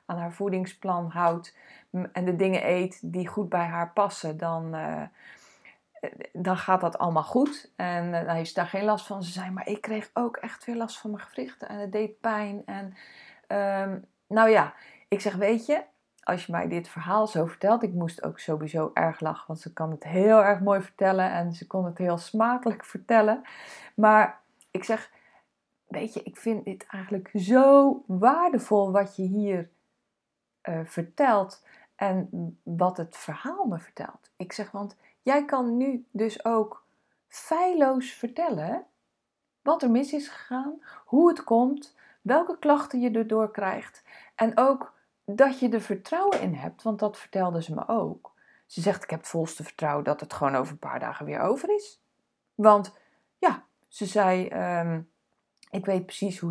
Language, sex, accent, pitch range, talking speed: Dutch, female, Dutch, 180-235 Hz, 175 wpm